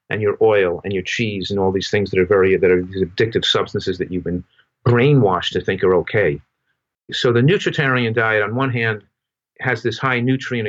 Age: 50-69